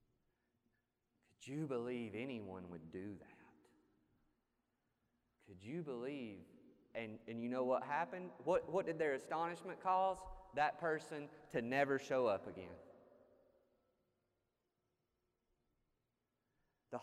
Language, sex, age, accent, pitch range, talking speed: English, male, 30-49, American, 110-140 Hz, 100 wpm